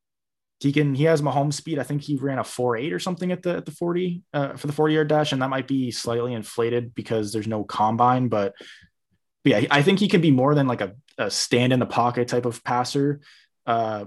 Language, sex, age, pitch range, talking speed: English, male, 20-39, 120-150 Hz, 245 wpm